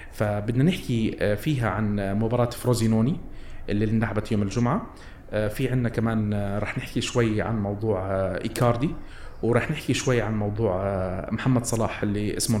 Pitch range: 100-125 Hz